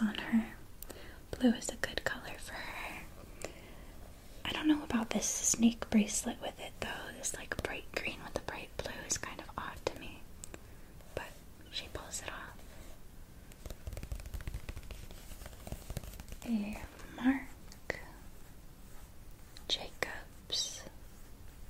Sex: female